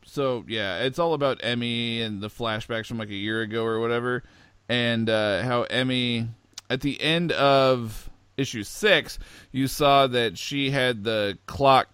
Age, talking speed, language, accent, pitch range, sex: 40-59, 165 wpm, English, American, 100-120 Hz, male